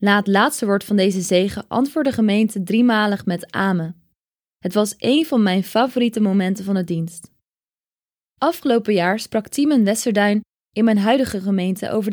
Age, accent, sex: 20-39, Dutch, female